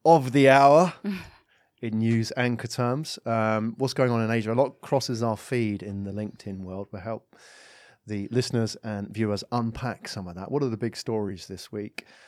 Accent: British